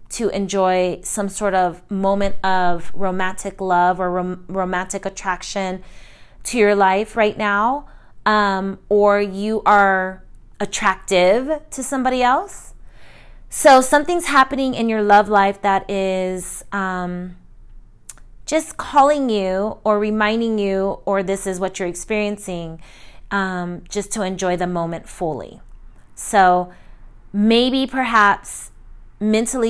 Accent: American